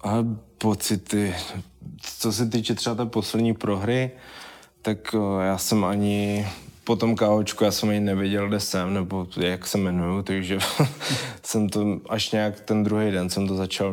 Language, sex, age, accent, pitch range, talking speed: Czech, male, 20-39, native, 95-105 Hz, 160 wpm